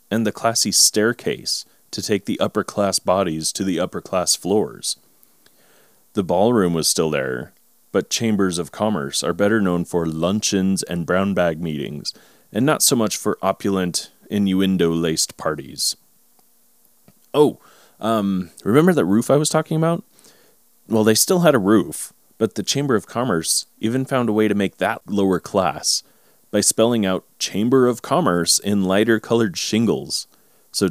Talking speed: 150 wpm